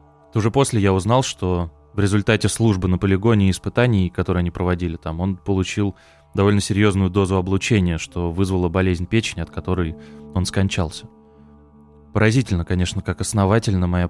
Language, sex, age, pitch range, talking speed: Russian, male, 20-39, 90-105 Hz, 150 wpm